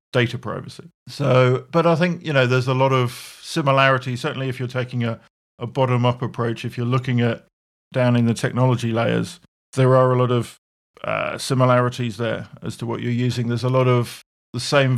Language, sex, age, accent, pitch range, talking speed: English, male, 50-69, British, 115-130 Hz, 195 wpm